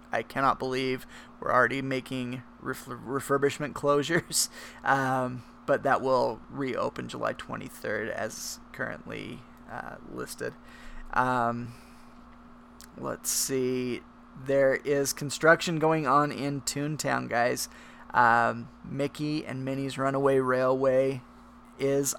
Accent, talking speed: American, 105 wpm